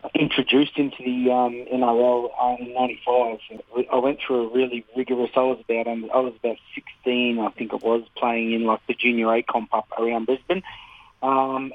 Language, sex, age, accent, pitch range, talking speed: English, male, 30-49, Australian, 115-130 Hz, 190 wpm